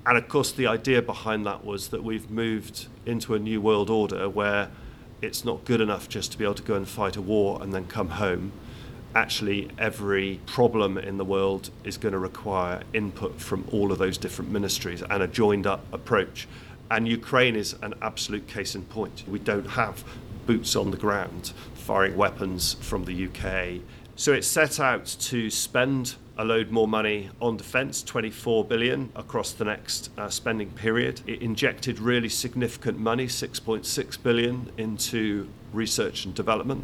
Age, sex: 40-59, male